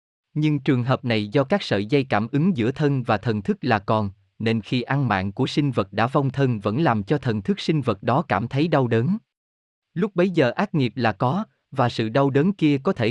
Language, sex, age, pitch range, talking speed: Vietnamese, male, 20-39, 110-155 Hz, 245 wpm